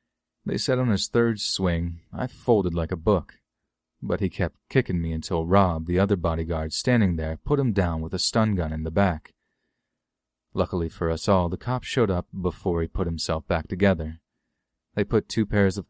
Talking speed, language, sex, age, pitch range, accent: 195 wpm, English, male, 30-49, 80-100 Hz, American